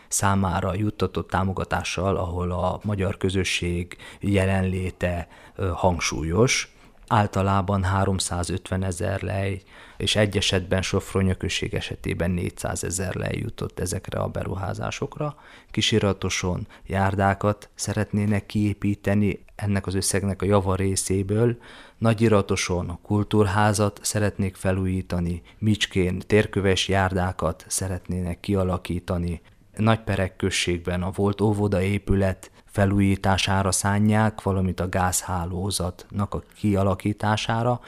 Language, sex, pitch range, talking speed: Hungarian, male, 90-105 Hz, 90 wpm